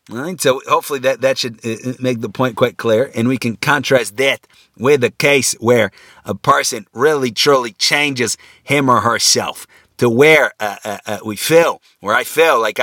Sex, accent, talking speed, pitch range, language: male, American, 185 wpm, 110-135 Hz, English